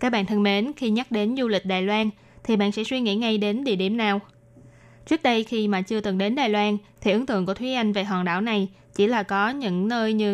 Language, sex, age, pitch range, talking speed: Vietnamese, female, 20-39, 195-235 Hz, 265 wpm